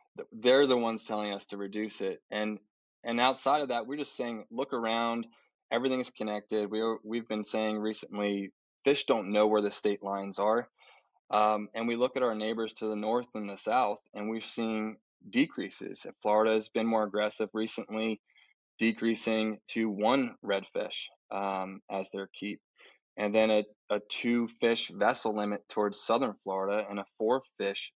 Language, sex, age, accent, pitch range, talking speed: English, male, 20-39, American, 100-115 Hz, 175 wpm